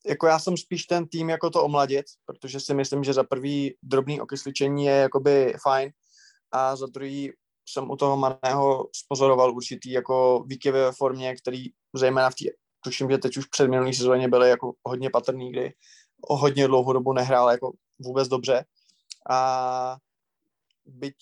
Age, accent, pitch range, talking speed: 20-39, native, 125-135 Hz, 160 wpm